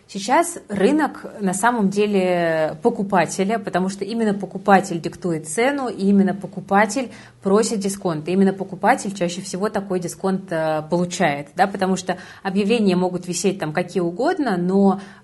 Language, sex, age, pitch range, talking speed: Russian, female, 20-39, 175-205 Hz, 125 wpm